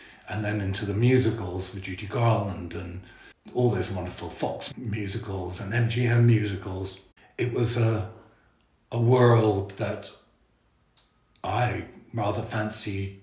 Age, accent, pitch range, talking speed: 60-79, British, 100-120 Hz, 120 wpm